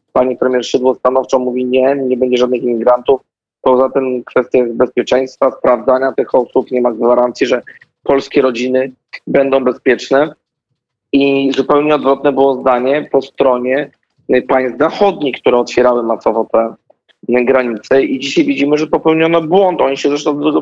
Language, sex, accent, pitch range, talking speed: Polish, male, native, 130-150 Hz, 145 wpm